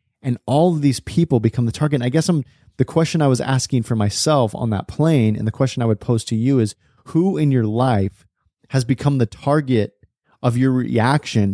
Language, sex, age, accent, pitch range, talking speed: English, male, 30-49, American, 105-125 Hz, 215 wpm